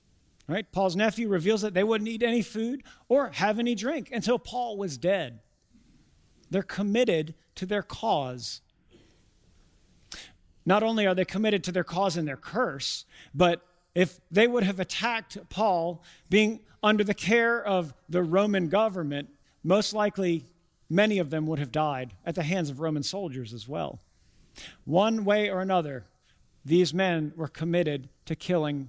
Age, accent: 50-69, American